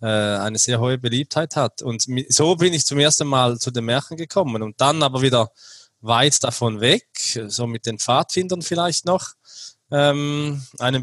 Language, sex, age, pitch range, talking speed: German, male, 20-39, 125-150 Hz, 170 wpm